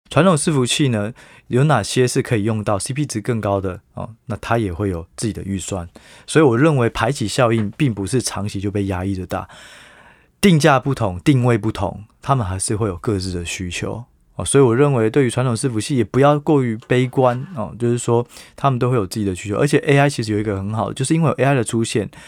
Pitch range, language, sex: 100-130 Hz, Chinese, male